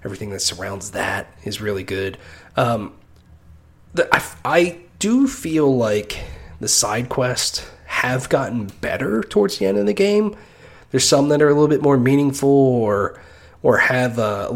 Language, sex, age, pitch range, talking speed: English, male, 30-49, 100-140 Hz, 160 wpm